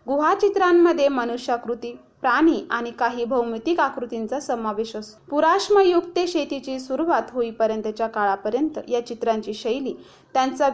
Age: 30-49